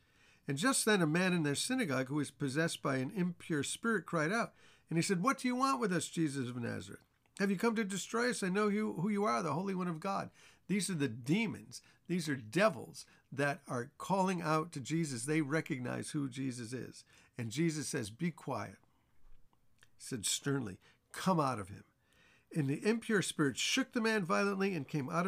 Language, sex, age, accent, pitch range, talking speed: English, male, 50-69, American, 130-200 Hz, 205 wpm